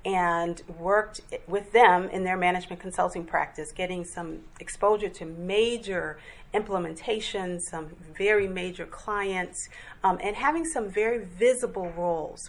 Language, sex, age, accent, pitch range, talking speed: English, female, 40-59, American, 175-215 Hz, 125 wpm